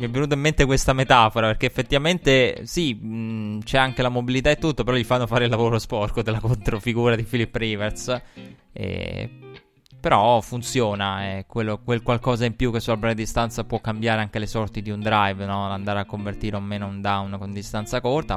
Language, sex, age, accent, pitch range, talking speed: Italian, male, 20-39, native, 105-125 Hz, 200 wpm